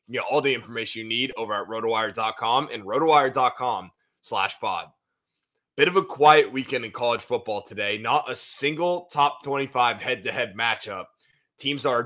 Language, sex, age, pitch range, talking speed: English, male, 20-39, 115-145 Hz, 165 wpm